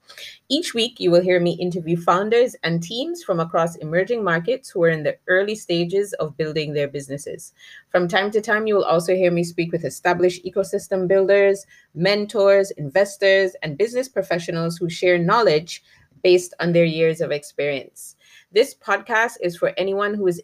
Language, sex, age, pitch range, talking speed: English, female, 30-49, 165-195 Hz, 175 wpm